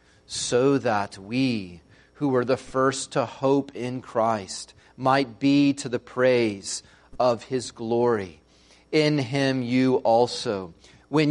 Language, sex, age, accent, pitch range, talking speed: English, male, 30-49, American, 125-150 Hz, 125 wpm